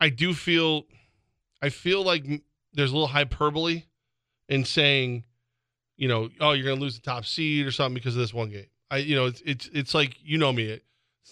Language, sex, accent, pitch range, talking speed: English, male, American, 120-150 Hz, 210 wpm